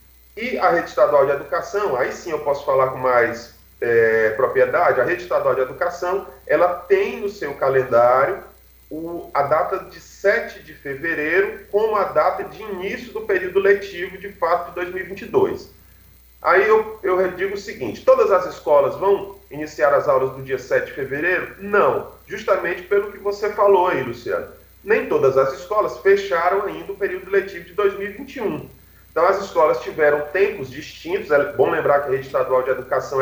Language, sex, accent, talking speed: Portuguese, male, Brazilian, 170 wpm